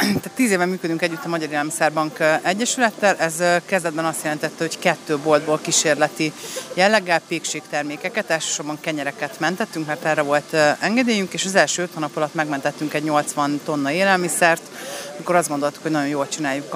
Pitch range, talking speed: 150-180 Hz, 155 wpm